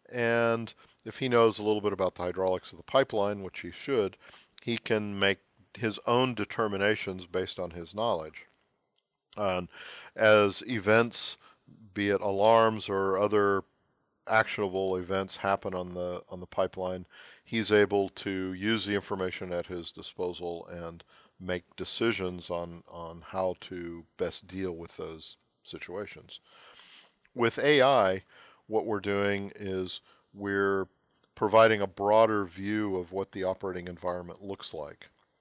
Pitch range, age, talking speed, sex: 90-105 Hz, 50-69, 135 wpm, male